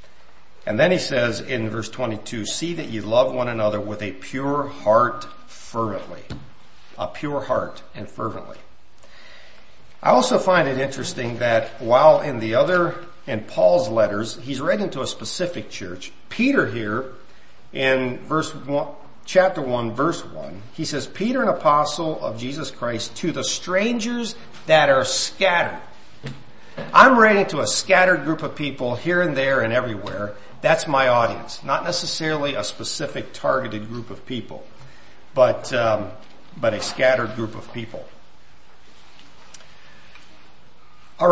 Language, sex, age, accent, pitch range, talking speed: English, male, 50-69, American, 110-155 Hz, 140 wpm